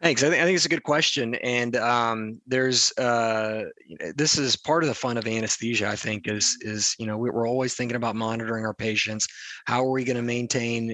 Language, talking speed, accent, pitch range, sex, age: English, 220 wpm, American, 115-145 Hz, male, 20-39